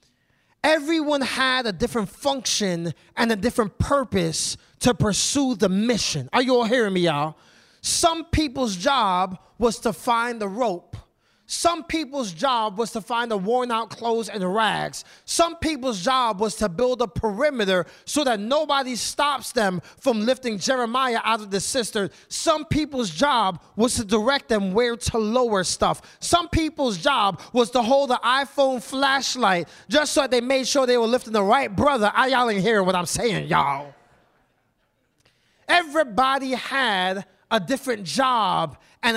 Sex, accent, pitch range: male, American, 220-290 Hz